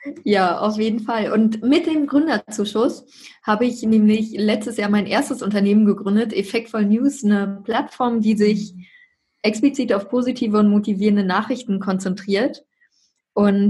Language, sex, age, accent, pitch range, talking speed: German, female, 20-39, German, 195-230 Hz, 135 wpm